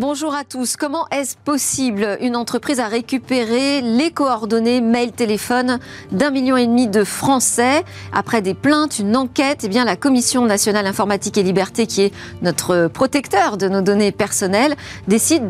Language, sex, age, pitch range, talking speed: French, female, 40-59, 205-265 Hz, 160 wpm